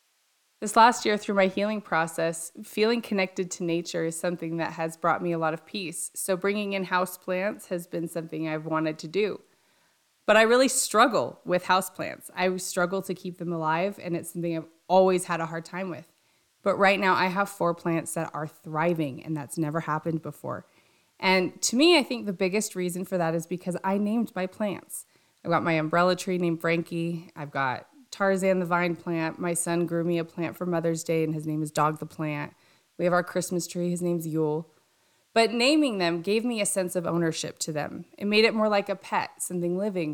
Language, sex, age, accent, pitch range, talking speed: English, female, 20-39, American, 165-195 Hz, 210 wpm